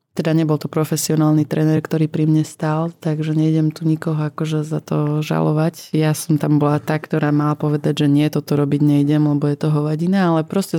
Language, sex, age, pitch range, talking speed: Slovak, female, 20-39, 150-165 Hz, 200 wpm